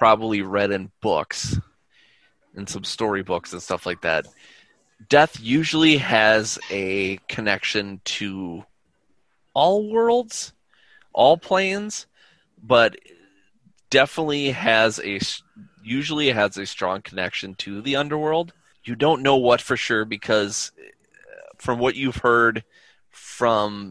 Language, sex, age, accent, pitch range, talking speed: English, male, 20-39, American, 100-145 Hz, 115 wpm